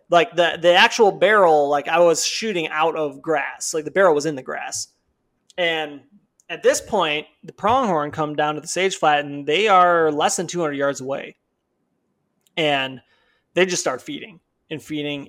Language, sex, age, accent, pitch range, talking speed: English, male, 20-39, American, 140-175 Hz, 180 wpm